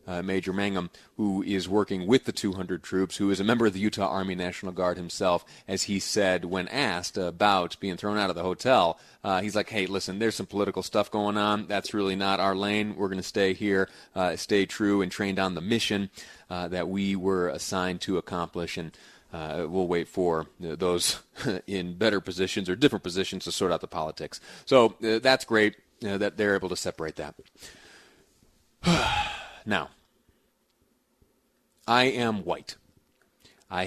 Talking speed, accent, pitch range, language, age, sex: 185 wpm, American, 95-105 Hz, English, 30-49, male